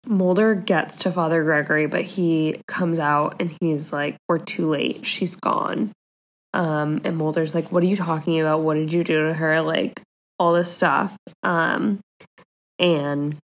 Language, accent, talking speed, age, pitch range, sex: English, American, 170 wpm, 10-29, 155-185 Hz, female